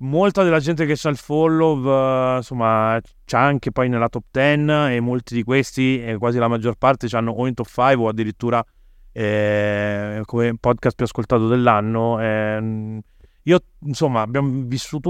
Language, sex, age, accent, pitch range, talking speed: Italian, male, 30-49, native, 110-135 Hz, 165 wpm